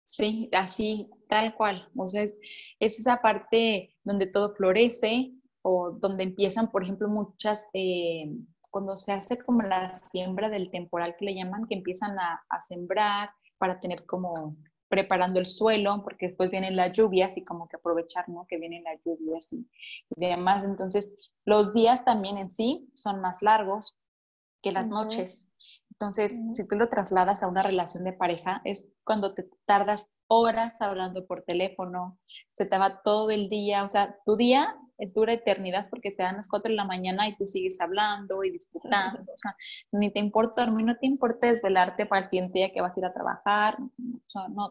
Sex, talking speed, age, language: female, 185 wpm, 20-39, Spanish